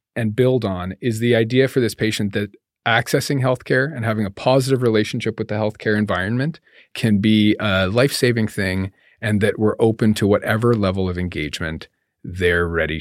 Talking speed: 175 wpm